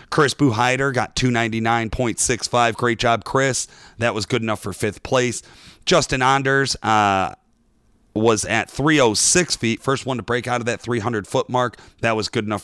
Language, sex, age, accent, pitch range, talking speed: English, male, 30-49, American, 110-130 Hz, 160 wpm